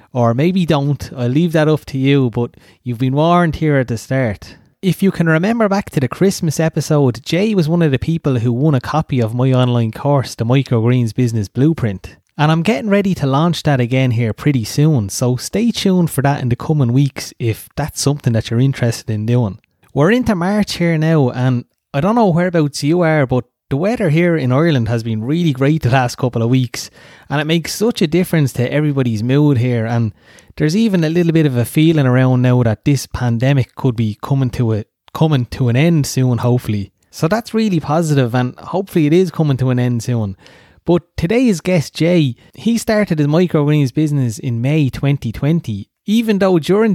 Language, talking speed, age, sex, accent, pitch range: English, 210 wpm, 30-49, male, Irish, 125-165 Hz